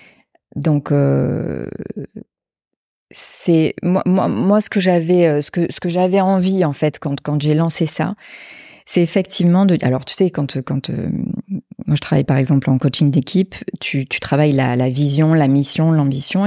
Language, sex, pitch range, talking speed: French, female, 145-180 Hz, 175 wpm